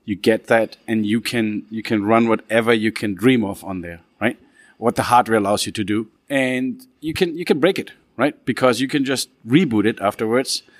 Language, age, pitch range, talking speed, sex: English, 30-49, 105-125 Hz, 215 wpm, male